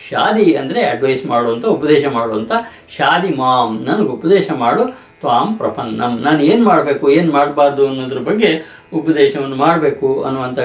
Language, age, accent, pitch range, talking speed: Kannada, 60-79, native, 135-190 Hz, 130 wpm